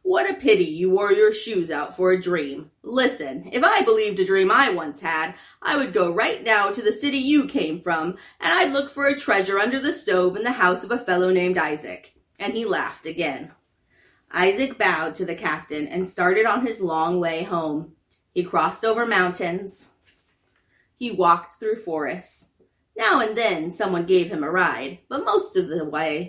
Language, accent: English, American